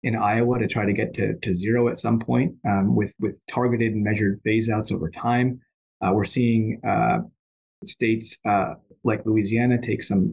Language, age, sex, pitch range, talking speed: English, 30-49, male, 110-125 Hz, 185 wpm